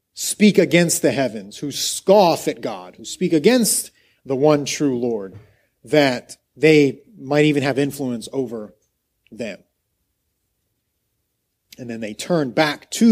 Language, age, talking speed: English, 40-59, 135 wpm